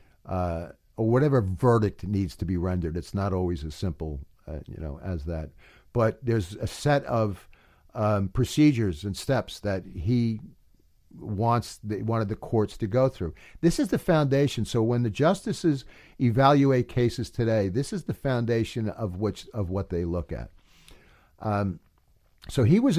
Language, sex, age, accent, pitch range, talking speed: English, male, 50-69, American, 90-125 Hz, 165 wpm